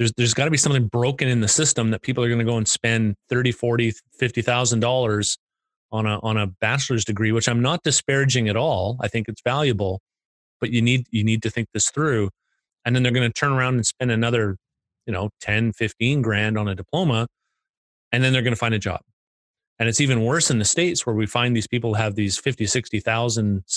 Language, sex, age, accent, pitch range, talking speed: English, male, 30-49, American, 110-135 Hz, 225 wpm